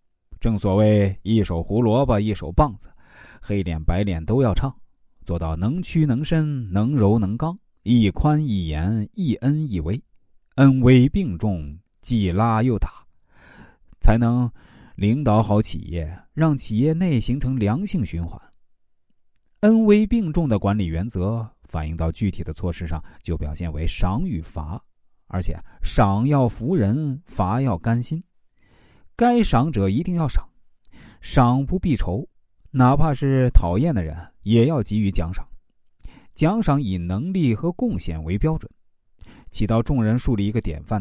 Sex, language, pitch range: male, Chinese, 90-140 Hz